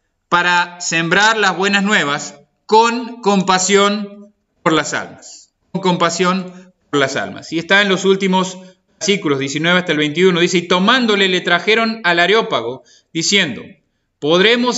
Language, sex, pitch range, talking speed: Spanish, male, 175-225 Hz, 140 wpm